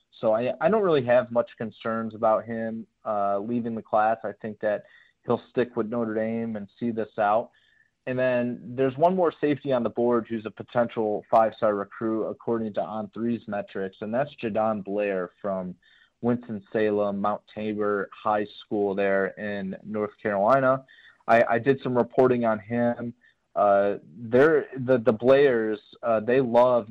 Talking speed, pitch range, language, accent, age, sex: 165 wpm, 105-125 Hz, English, American, 30-49, male